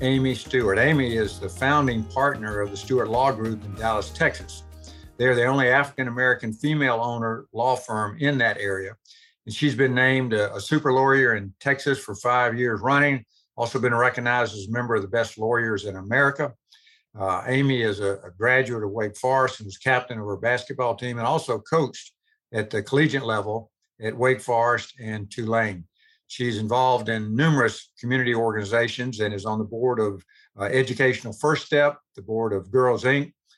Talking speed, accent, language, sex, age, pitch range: 180 wpm, American, English, male, 60-79, 110-130 Hz